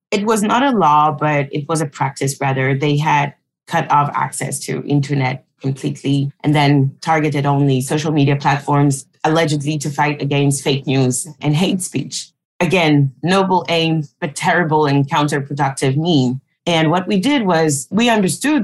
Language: English